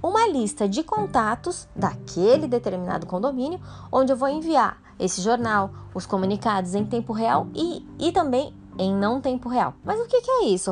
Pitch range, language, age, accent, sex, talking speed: 175-260 Hz, Portuguese, 20-39, Brazilian, female, 170 wpm